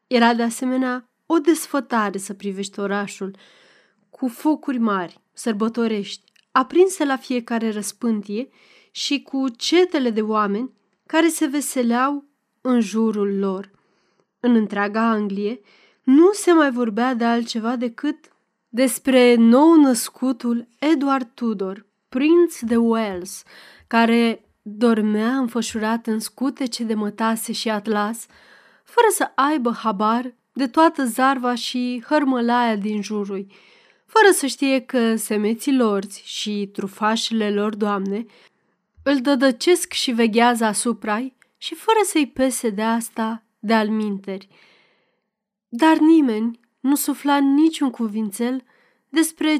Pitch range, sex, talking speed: 215-270 Hz, female, 115 wpm